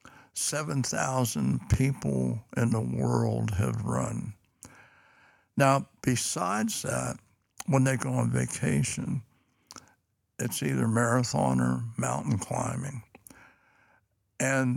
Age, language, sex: 60-79, English, male